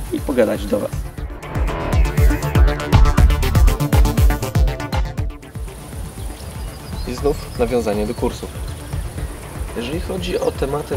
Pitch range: 110-125 Hz